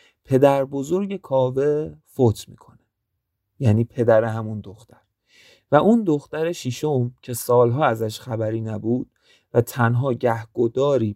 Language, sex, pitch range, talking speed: Persian, male, 115-145 Hz, 115 wpm